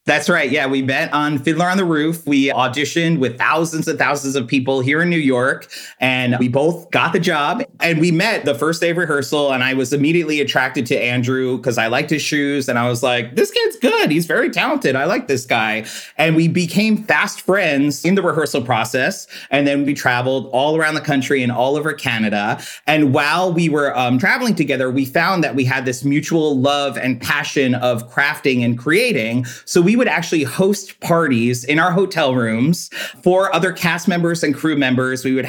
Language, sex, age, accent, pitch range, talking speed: English, male, 30-49, American, 135-170 Hz, 210 wpm